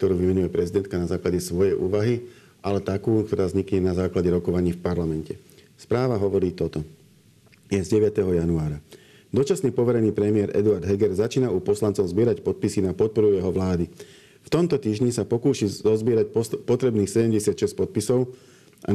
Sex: male